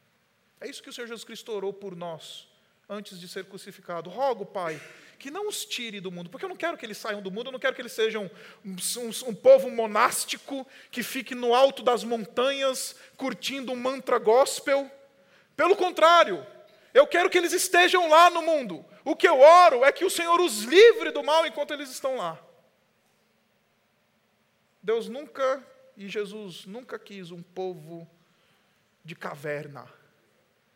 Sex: male